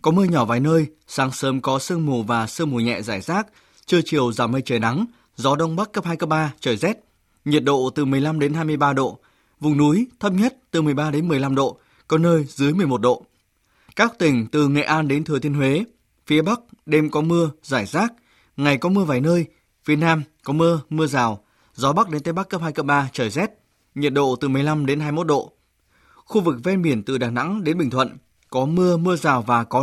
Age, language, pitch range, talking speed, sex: 20-39, Vietnamese, 135-165 Hz, 225 wpm, male